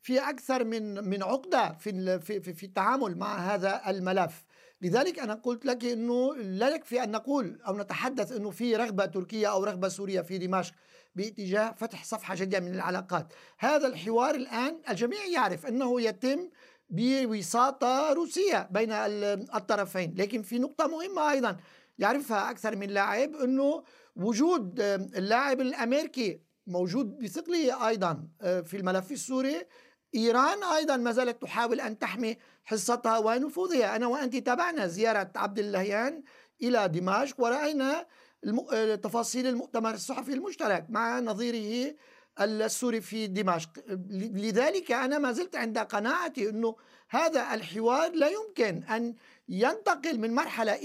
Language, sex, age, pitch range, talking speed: Arabic, male, 50-69, 205-265 Hz, 125 wpm